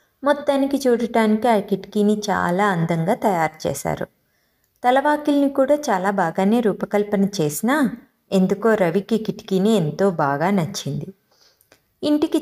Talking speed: 100 wpm